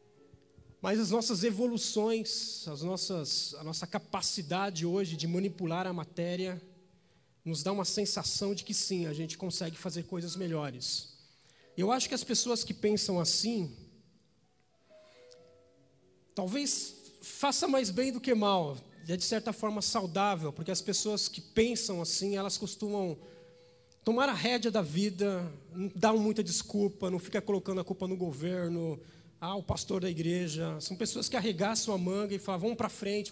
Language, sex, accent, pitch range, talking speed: Portuguese, male, Brazilian, 165-220 Hz, 155 wpm